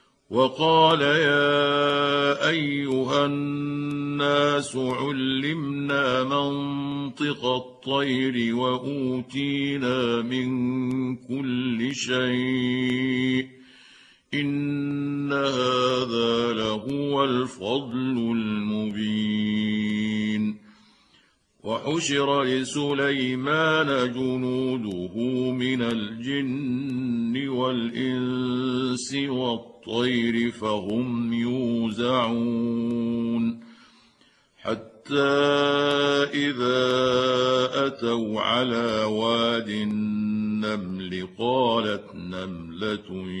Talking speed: 45 wpm